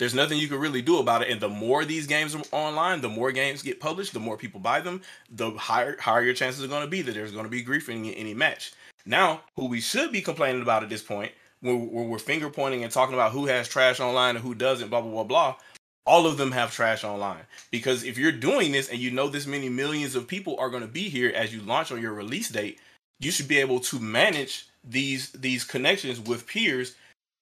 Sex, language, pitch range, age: male, English, 115-140 Hz, 30-49